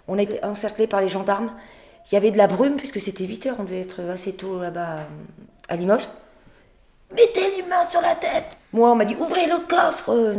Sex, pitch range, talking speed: female, 185-225 Hz, 235 wpm